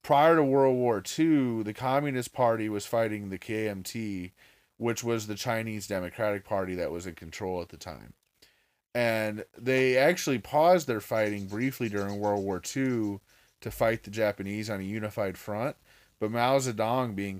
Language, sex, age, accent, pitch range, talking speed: English, male, 30-49, American, 100-120 Hz, 165 wpm